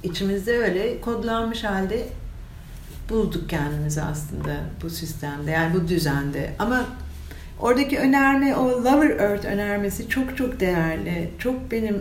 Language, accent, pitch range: Turkish, native, 160-200 Hz